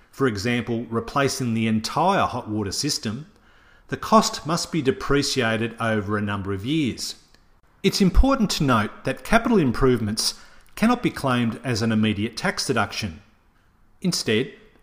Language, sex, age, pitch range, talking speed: English, male, 40-59, 110-160 Hz, 140 wpm